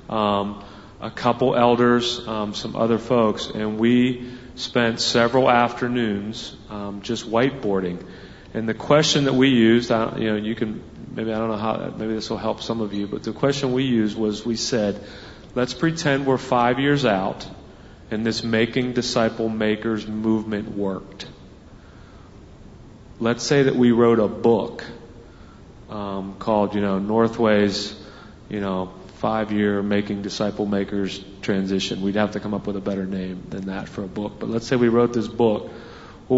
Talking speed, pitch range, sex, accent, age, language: 170 wpm, 100-120 Hz, male, American, 40-59, English